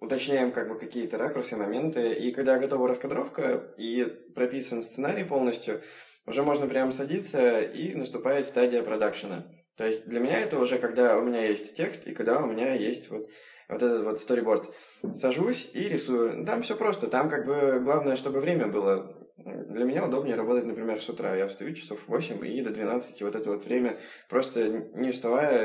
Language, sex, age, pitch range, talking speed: Russian, male, 20-39, 110-135 Hz, 180 wpm